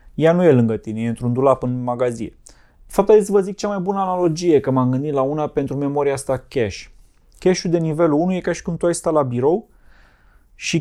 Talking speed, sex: 230 wpm, male